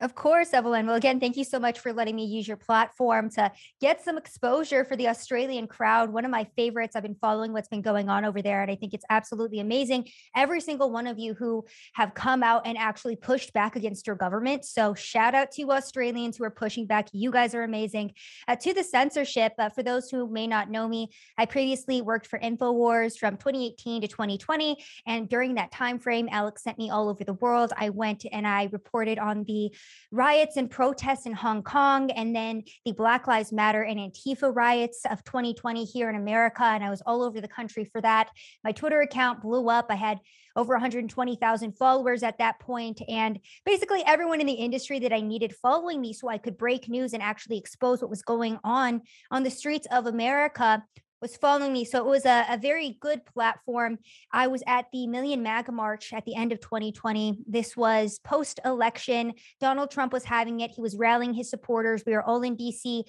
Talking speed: 210 wpm